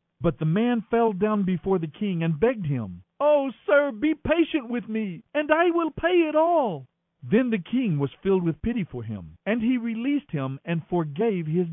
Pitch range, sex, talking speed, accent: 160-230 Hz, male, 200 wpm, American